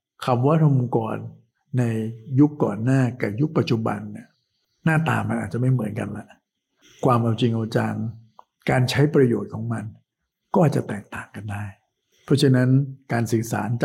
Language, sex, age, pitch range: Thai, male, 60-79, 110-130 Hz